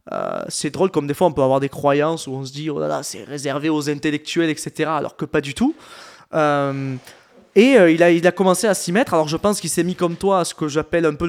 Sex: male